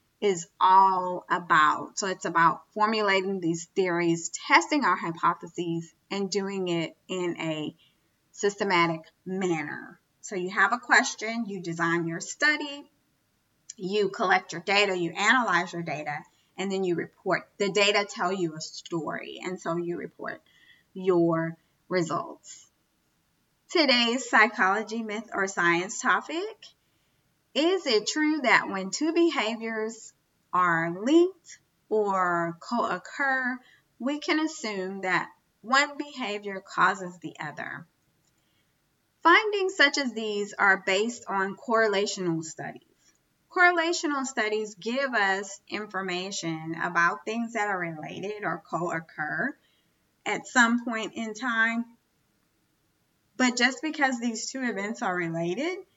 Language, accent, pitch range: English, American, 170-240 Hz